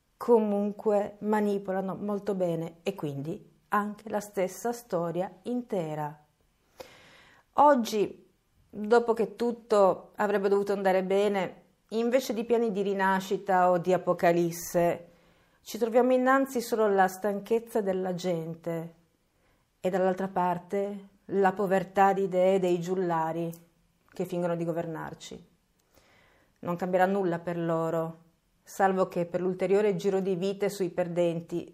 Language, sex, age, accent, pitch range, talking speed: Italian, female, 40-59, native, 170-200 Hz, 115 wpm